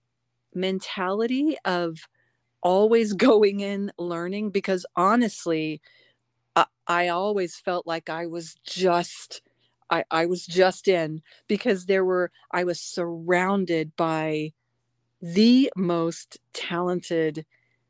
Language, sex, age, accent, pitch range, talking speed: English, female, 40-59, American, 165-220 Hz, 105 wpm